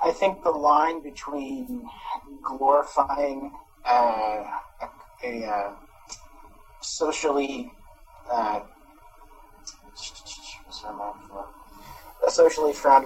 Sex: male